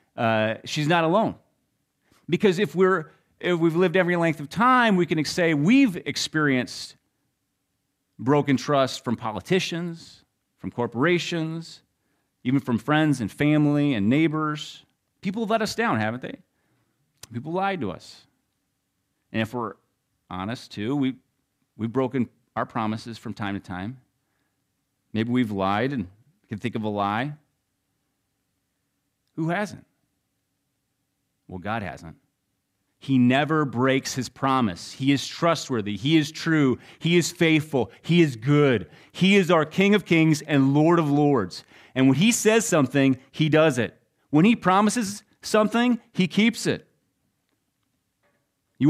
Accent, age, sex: American, 30-49, male